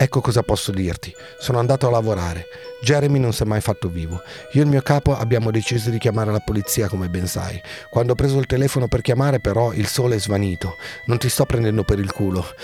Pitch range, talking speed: 105-140 Hz, 230 wpm